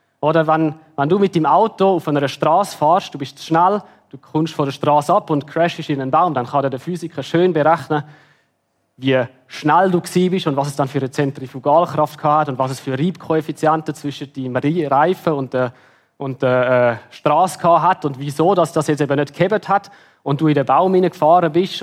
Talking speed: 200 wpm